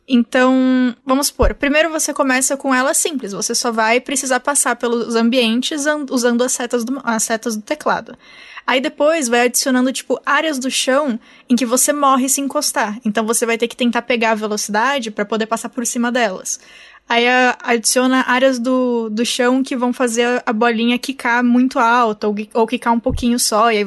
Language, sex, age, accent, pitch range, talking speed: Portuguese, female, 10-29, Brazilian, 230-260 Hz, 185 wpm